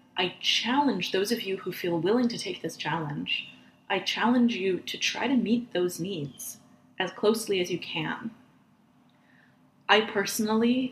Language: English